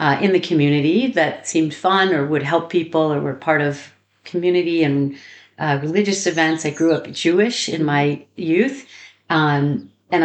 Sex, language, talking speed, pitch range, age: female, Slovak, 170 wpm, 150-185 Hz, 50-69